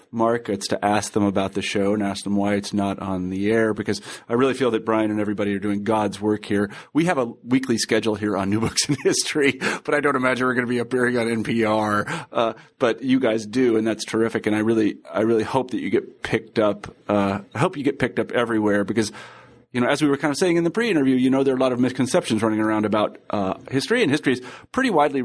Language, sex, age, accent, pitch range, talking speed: English, male, 40-59, American, 110-130 Hz, 260 wpm